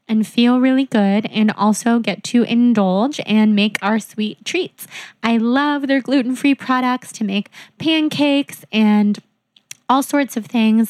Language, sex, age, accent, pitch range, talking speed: English, female, 20-39, American, 215-255 Hz, 150 wpm